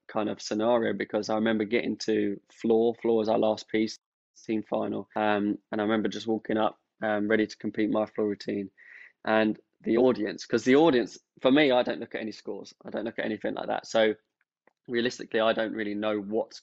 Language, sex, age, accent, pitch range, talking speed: English, male, 20-39, British, 105-120 Hz, 210 wpm